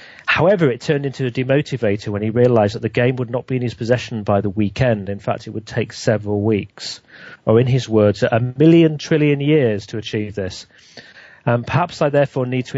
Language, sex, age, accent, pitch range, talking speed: English, male, 40-59, British, 110-135 Hz, 215 wpm